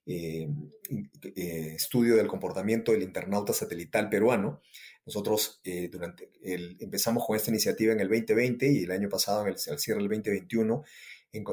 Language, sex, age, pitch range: Spanish, male, 30-49, 100-120 Hz